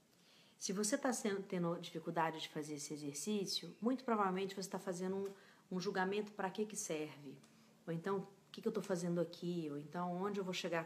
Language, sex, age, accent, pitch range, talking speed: Portuguese, female, 40-59, Brazilian, 175-210 Hz, 200 wpm